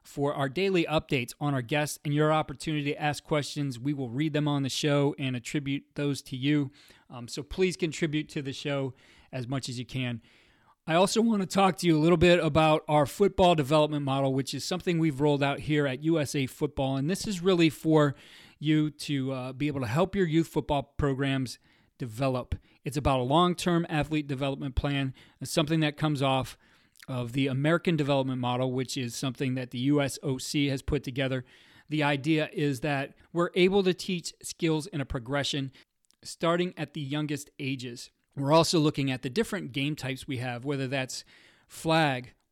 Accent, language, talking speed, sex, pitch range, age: American, English, 190 wpm, male, 135-155 Hz, 30-49